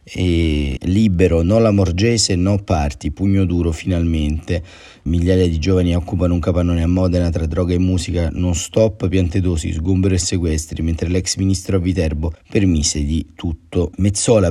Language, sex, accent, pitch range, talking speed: Italian, male, native, 85-100 Hz, 155 wpm